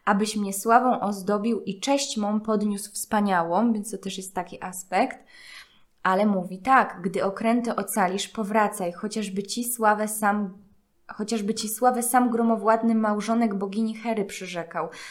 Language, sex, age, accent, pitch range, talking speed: Polish, female, 20-39, native, 195-230 Hz, 140 wpm